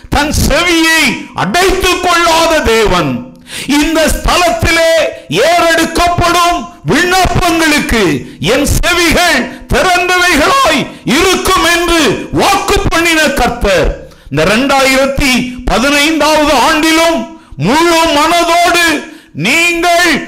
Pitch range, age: 260-345 Hz, 50-69